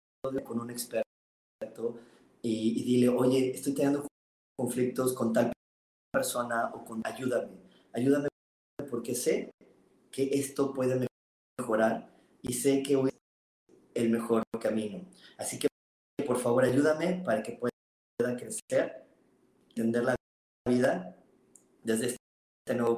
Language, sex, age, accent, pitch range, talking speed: Spanish, male, 30-49, Mexican, 110-130 Hz, 120 wpm